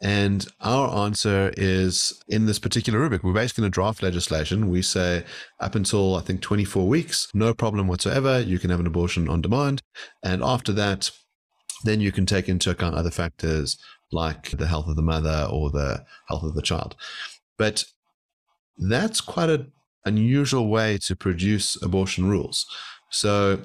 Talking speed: 170 wpm